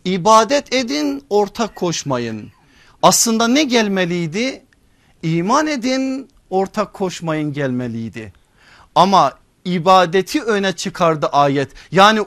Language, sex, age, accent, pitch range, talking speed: Turkish, male, 50-69, native, 165-215 Hz, 90 wpm